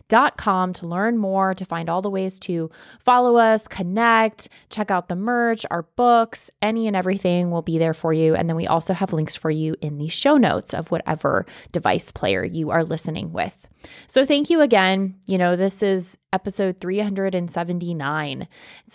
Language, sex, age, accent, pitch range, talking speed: English, female, 20-39, American, 165-200 Hz, 185 wpm